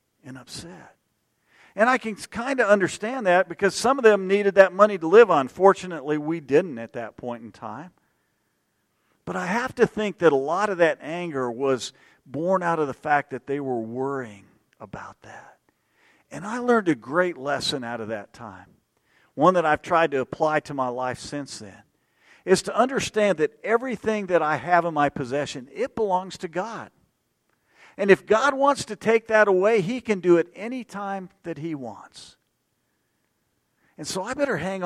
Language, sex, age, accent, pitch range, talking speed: English, male, 50-69, American, 140-210 Hz, 185 wpm